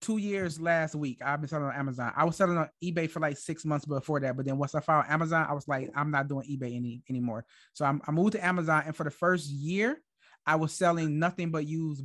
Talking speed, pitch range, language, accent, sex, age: 260 wpm, 140-165 Hz, English, American, male, 30-49